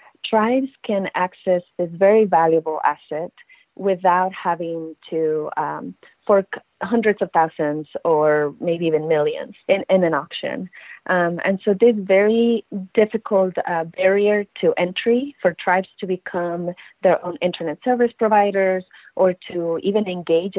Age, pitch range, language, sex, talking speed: 30-49, 160-195 Hz, English, female, 135 wpm